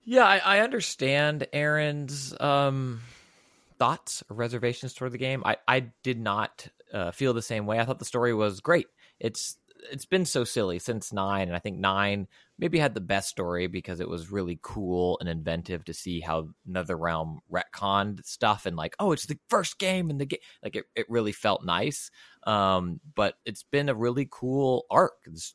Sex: male